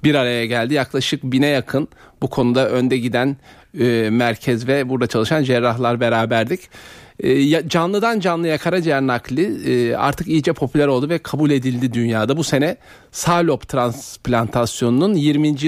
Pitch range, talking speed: 125-185 Hz, 140 wpm